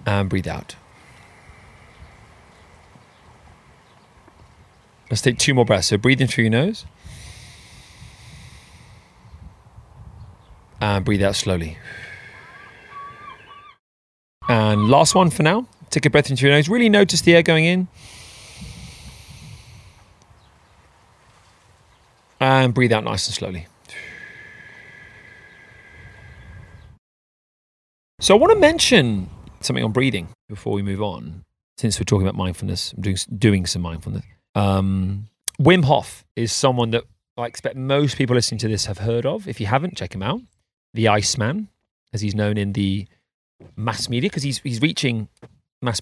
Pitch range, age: 100-135 Hz, 30-49